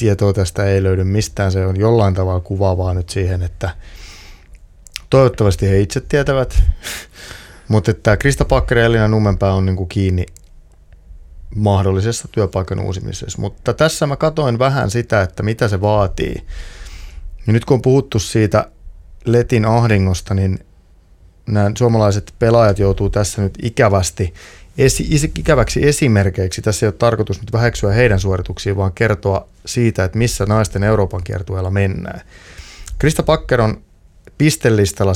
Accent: native